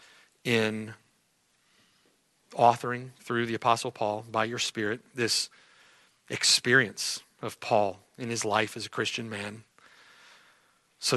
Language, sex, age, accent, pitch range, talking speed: English, male, 40-59, American, 110-125 Hz, 115 wpm